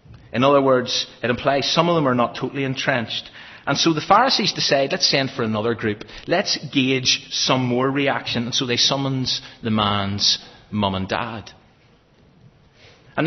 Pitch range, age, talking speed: 115-150 Hz, 30-49, 165 wpm